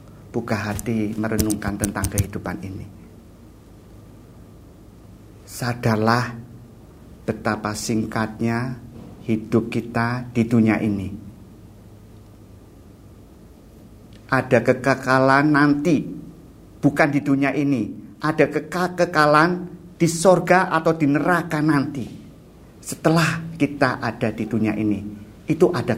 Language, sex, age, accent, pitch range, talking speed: Indonesian, male, 50-69, native, 105-135 Hz, 85 wpm